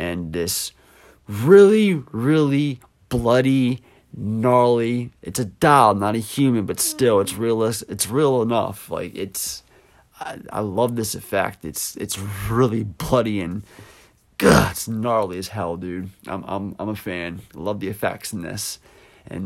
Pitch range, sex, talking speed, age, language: 100-130 Hz, male, 150 wpm, 30-49, English